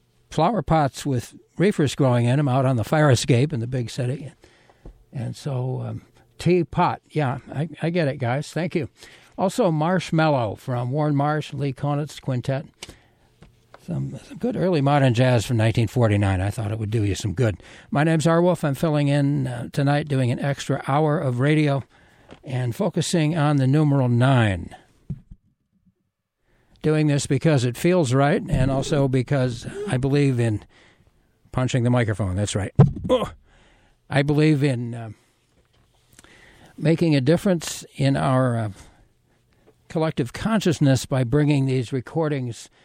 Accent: American